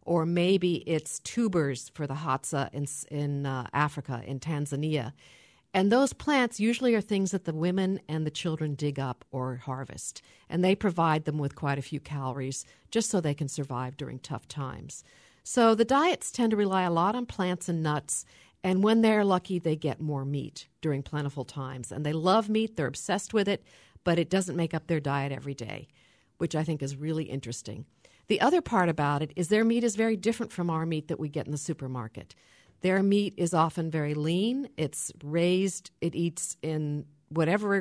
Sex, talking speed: female, 195 wpm